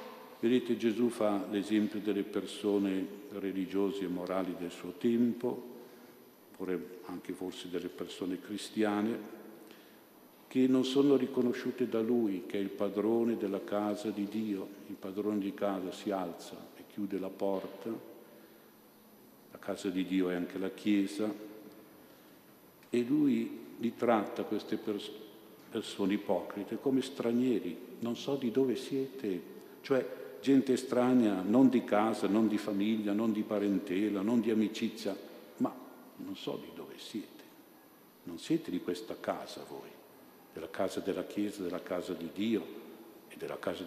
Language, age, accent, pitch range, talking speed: Italian, 50-69, native, 100-125 Hz, 140 wpm